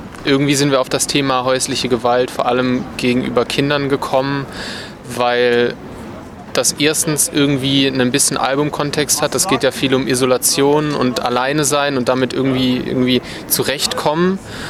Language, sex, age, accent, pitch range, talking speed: German, male, 20-39, German, 125-145 Hz, 145 wpm